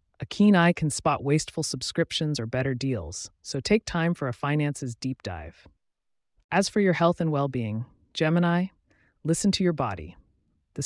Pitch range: 120-165 Hz